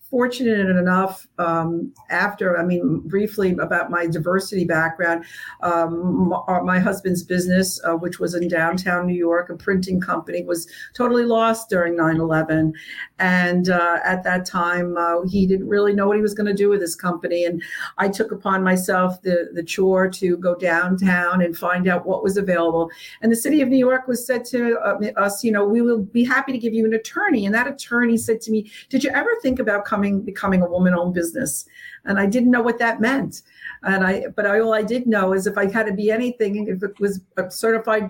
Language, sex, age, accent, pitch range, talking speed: English, female, 50-69, American, 180-225 Hz, 205 wpm